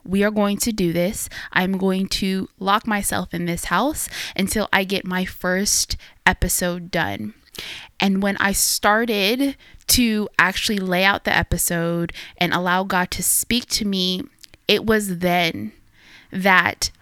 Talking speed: 150 wpm